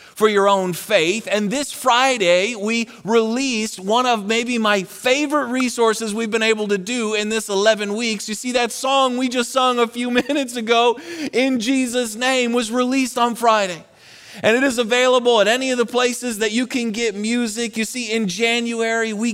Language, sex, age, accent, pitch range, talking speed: English, male, 30-49, American, 205-240 Hz, 190 wpm